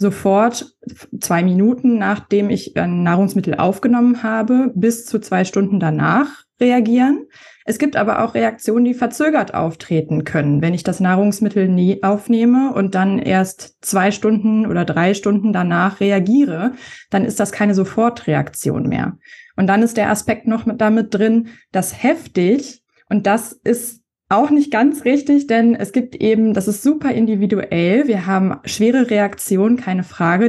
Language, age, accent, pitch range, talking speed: German, 20-39, German, 190-240 Hz, 155 wpm